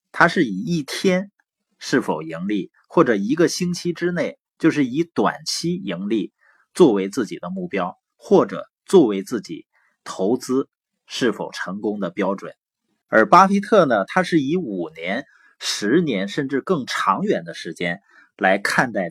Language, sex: Chinese, male